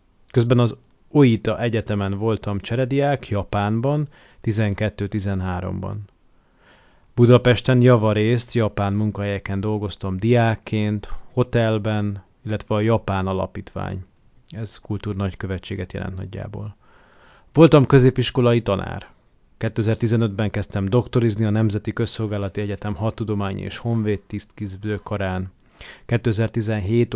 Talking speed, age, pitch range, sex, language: 80 wpm, 30-49, 100-115 Hz, male, Hungarian